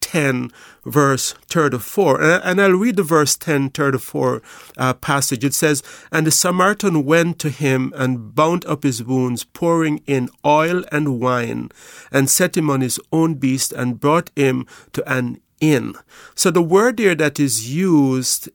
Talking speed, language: 170 wpm, English